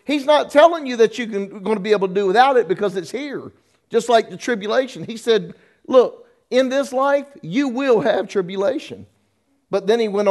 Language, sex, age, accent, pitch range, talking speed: English, male, 50-69, American, 150-215 Hz, 205 wpm